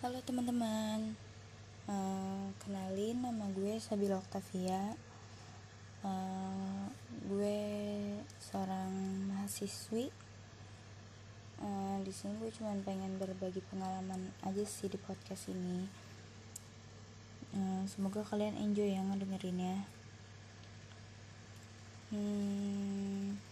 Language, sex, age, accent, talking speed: Indonesian, female, 20-39, native, 85 wpm